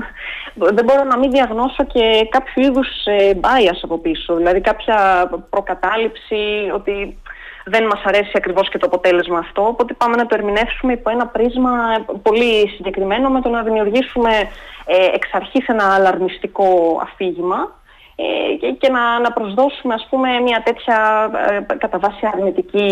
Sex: female